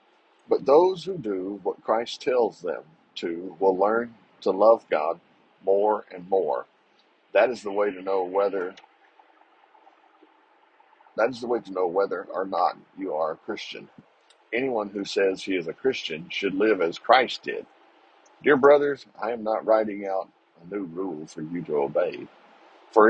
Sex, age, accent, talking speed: male, 50-69, American, 165 wpm